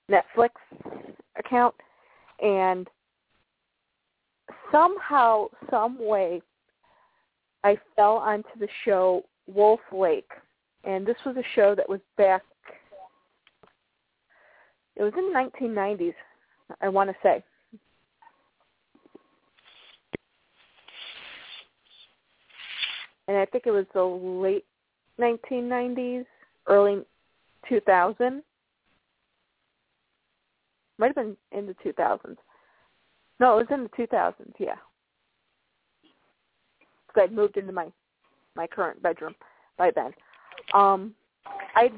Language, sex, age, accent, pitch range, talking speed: English, female, 40-59, American, 195-245 Hz, 95 wpm